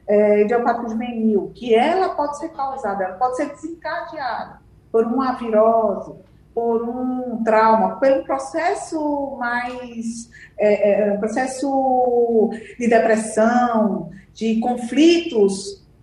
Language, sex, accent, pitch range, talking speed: Portuguese, female, Brazilian, 220-295 Hz, 110 wpm